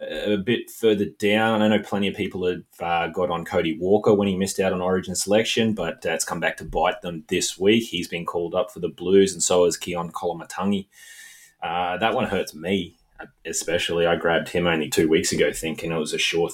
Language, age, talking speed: English, 20-39, 220 wpm